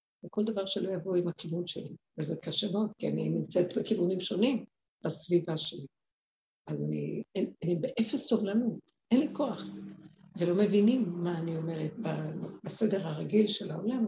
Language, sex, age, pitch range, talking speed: Hebrew, female, 50-69, 175-220 Hz, 145 wpm